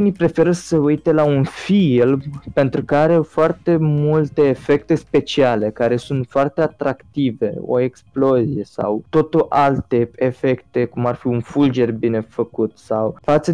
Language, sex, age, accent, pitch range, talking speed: Romanian, male, 20-39, native, 120-145 Hz, 145 wpm